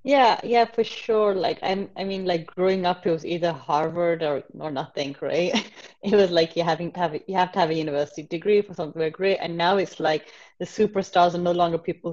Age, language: 20-39, English